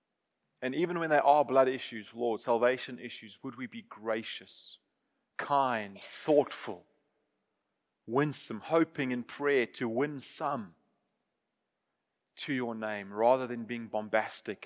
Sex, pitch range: male, 110-125 Hz